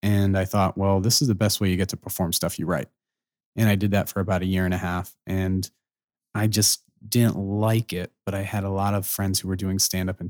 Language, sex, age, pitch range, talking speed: English, male, 30-49, 95-105 Hz, 260 wpm